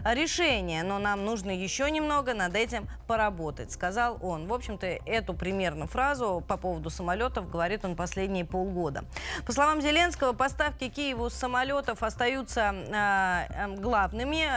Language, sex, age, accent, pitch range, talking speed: Russian, female, 20-39, native, 195-255 Hz, 130 wpm